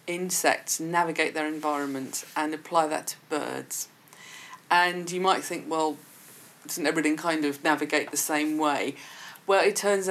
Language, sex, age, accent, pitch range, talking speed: English, female, 40-59, British, 150-185 Hz, 150 wpm